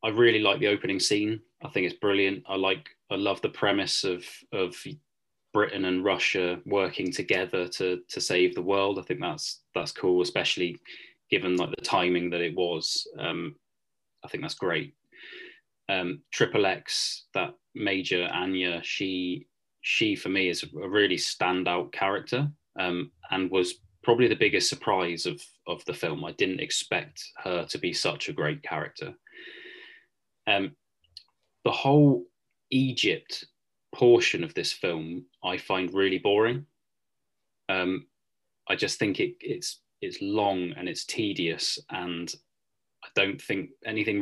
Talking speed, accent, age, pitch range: 150 wpm, British, 20-39, 90-120 Hz